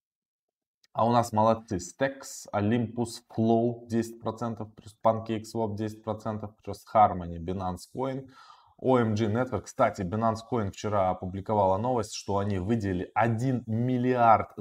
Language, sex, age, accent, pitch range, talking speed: Russian, male, 20-39, native, 95-120 Hz, 110 wpm